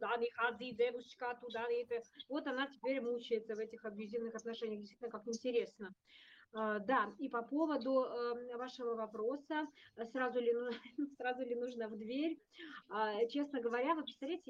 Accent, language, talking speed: native, Russian, 115 wpm